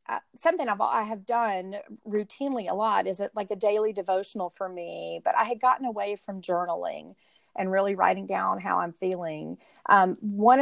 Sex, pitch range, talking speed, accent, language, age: female, 175-210 Hz, 180 wpm, American, English, 40-59